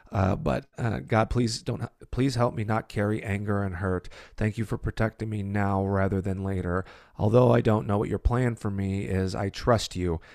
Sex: male